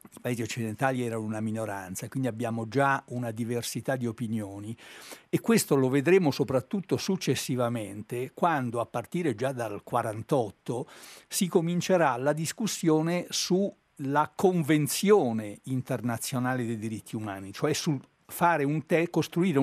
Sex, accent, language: male, native, Italian